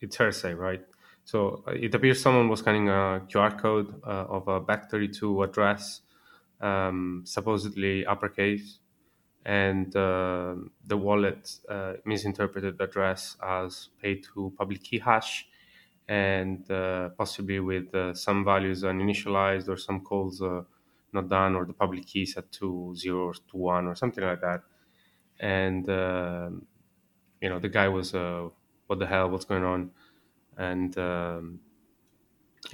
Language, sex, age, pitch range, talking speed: English, male, 20-39, 95-105 Hz, 140 wpm